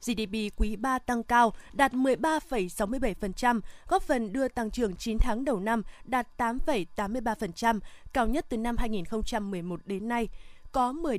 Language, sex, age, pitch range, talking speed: Vietnamese, female, 20-39, 220-260 Hz, 145 wpm